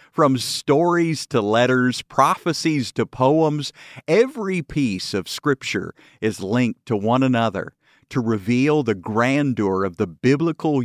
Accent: American